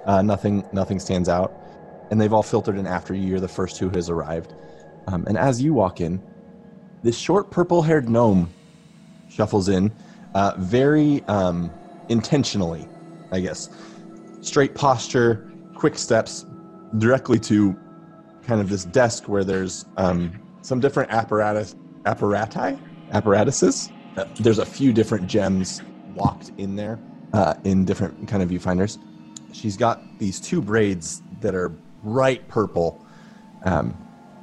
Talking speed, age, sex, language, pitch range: 140 wpm, 30-49, male, English, 95-150 Hz